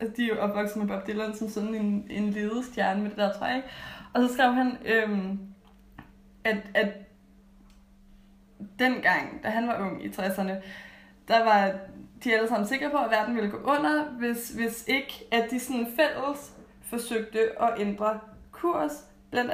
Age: 20-39